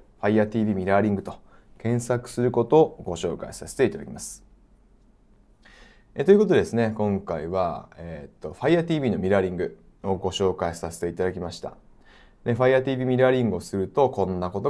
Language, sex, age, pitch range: Japanese, male, 20-39, 95-120 Hz